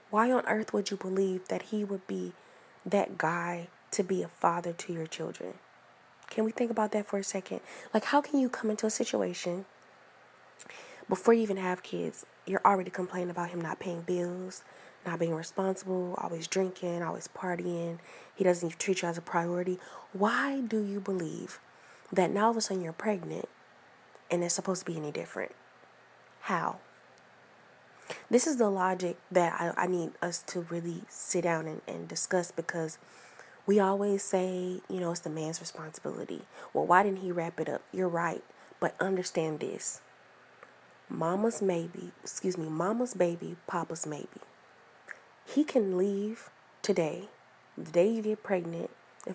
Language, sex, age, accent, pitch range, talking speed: English, female, 20-39, American, 170-205 Hz, 170 wpm